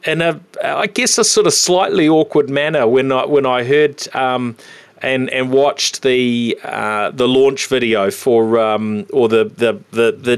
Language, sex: English, male